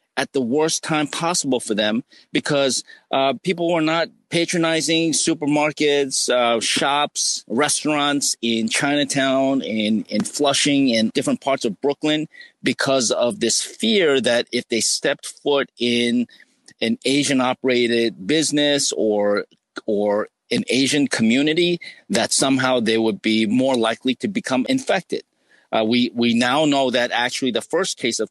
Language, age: English, 40-59